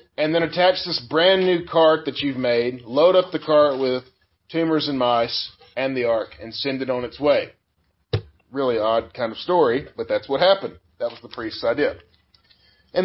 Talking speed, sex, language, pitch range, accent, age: 195 wpm, male, English, 125-180 Hz, American, 40-59